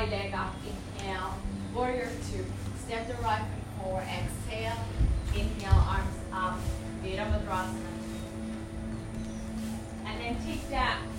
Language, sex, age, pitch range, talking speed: English, female, 30-49, 90-110 Hz, 105 wpm